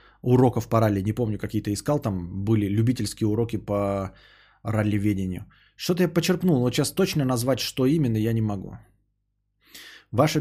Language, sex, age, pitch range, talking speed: Bulgarian, male, 20-39, 105-130 Hz, 150 wpm